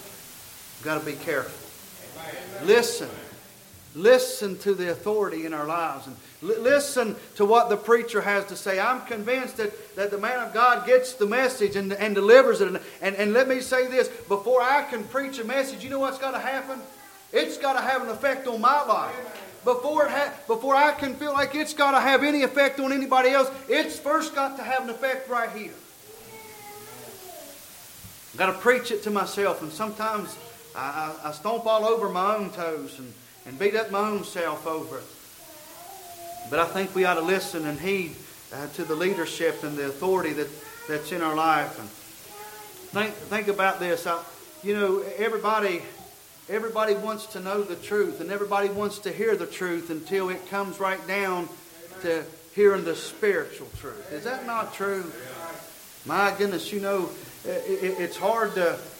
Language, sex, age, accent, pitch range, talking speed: English, male, 40-59, American, 185-265 Hz, 190 wpm